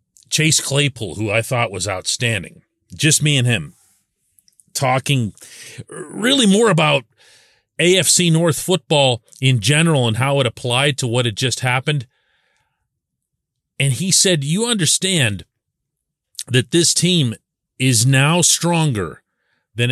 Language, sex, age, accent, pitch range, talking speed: English, male, 40-59, American, 115-150 Hz, 125 wpm